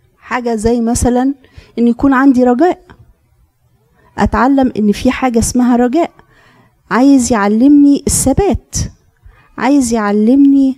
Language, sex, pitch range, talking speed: Arabic, female, 205-255 Hz, 100 wpm